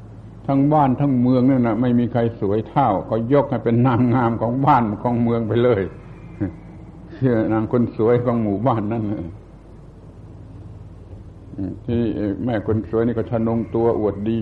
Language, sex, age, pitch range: Thai, male, 60-79, 100-120 Hz